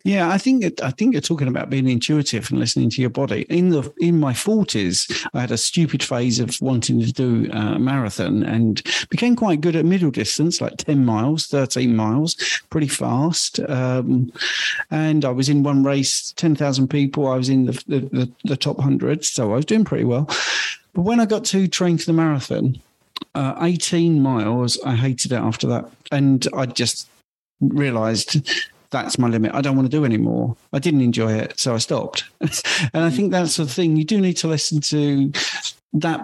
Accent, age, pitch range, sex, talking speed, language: British, 50-69, 125-160 Hz, male, 200 wpm, English